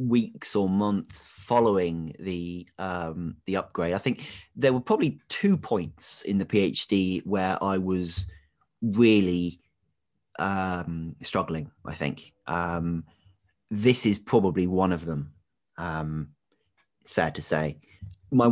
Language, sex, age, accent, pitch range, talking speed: English, male, 30-49, British, 90-105 Hz, 125 wpm